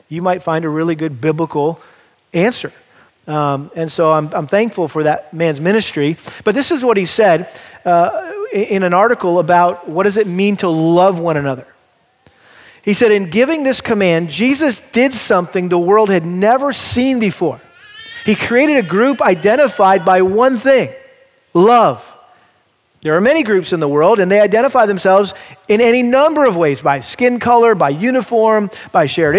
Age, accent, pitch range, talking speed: 40-59, American, 175-240 Hz, 175 wpm